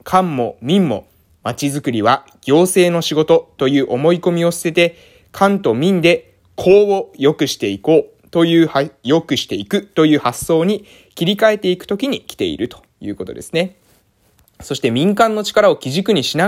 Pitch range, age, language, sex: 125-185 Hz, 20-39, Japanese, male